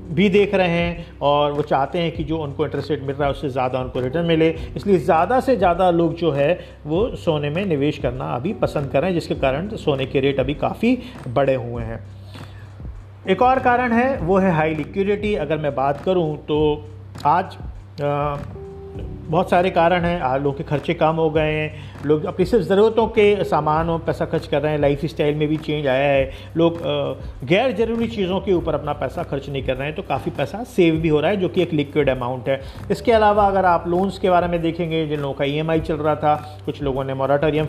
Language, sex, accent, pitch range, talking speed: Hindi, male, native, 135-175 Hz, 220 wpm